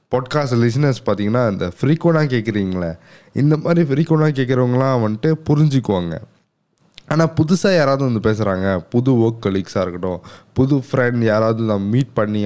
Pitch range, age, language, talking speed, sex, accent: 105-145 Hz, 20-39, Tamil, 130 wpm, male, native